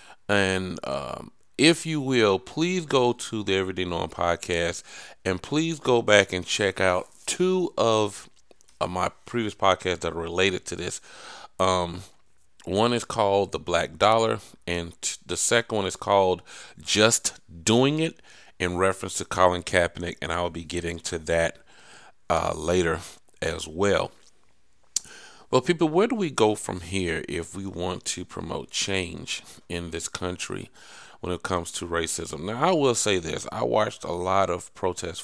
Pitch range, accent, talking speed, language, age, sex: 85-105 Hz, American, 160 wpm, English, 40-59, male